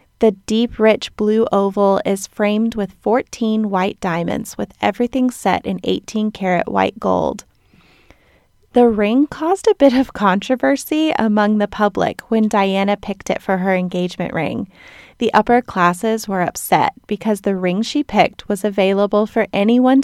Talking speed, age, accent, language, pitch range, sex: 150 wpm, 30-49, American, English, 195-240 Hz, female